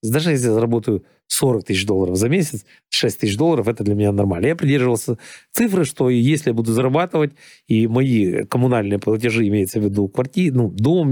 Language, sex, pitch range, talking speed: Russian, male, 105-130 Hz, 185 wpm